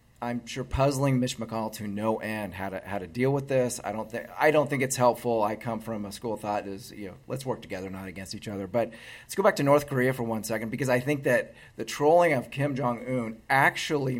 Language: English